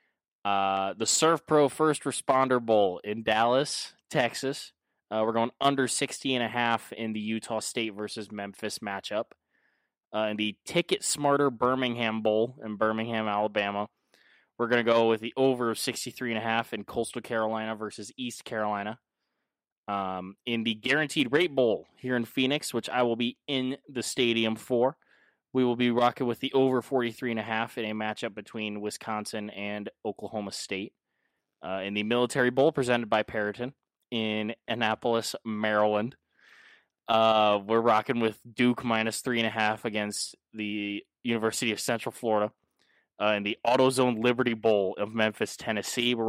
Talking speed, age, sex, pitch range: 160 wpm, 20-39, male, 105-125 Hz